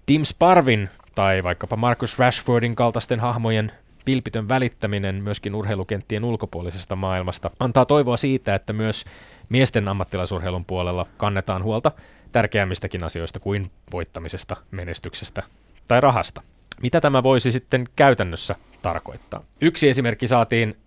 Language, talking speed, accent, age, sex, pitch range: Finnish, 115 wpm, native, 20-39, male, 95-120 Hz